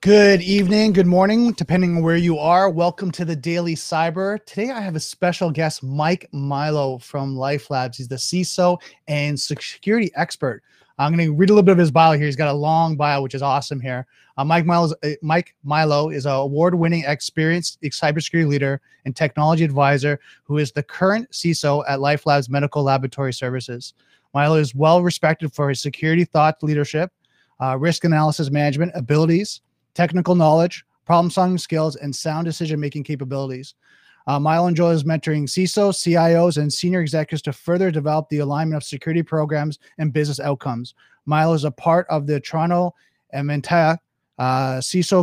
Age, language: 30-49, English